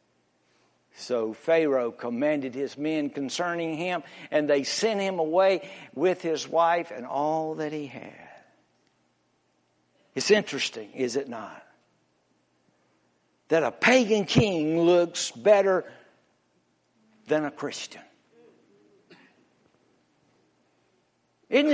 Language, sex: English, male